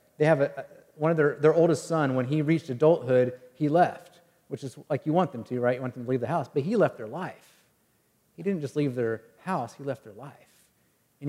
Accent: American